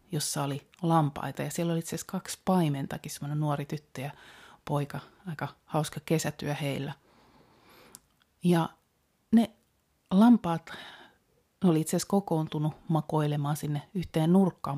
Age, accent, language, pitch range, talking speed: 30-49, native, Finnish, 150-185 Hz, 120 wpm